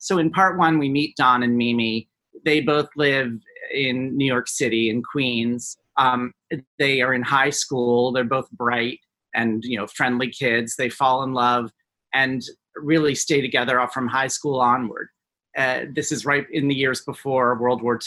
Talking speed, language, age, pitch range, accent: 185 wpm, English, 40-59, 120-145 Hz, American